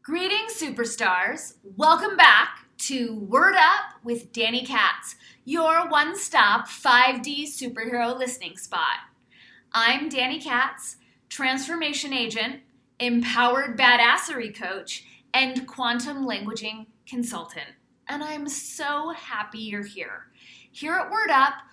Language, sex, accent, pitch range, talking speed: English, female, American, 230-290 Hz, 110 wpm